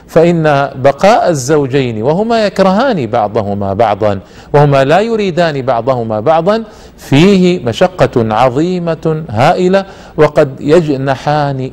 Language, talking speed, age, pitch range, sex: Arabic, 90 wpm, 50-69, 130-170 Hz, male